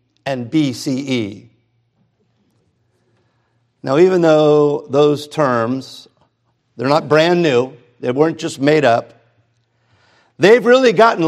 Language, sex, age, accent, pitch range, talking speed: English, male, 50-69, American, 120-150 Hz, 100 wpm